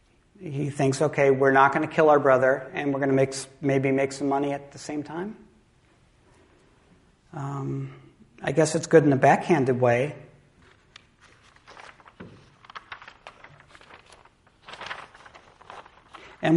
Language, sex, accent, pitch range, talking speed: English, male, American, 130-160 Hz, 120 wpm